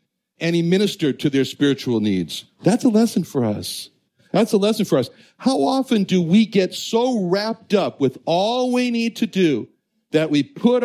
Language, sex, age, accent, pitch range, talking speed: English, male, 60-79, American, 155-215 Hz, 190 wpm